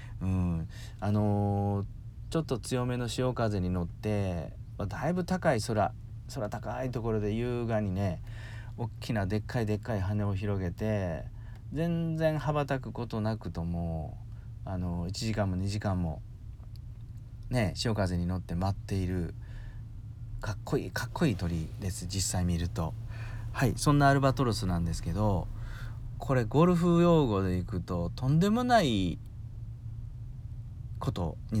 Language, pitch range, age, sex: Japanese, 95-115 Hz, 40-59, male